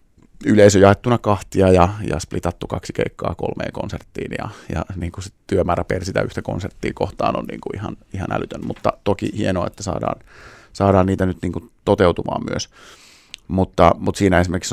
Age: 30-49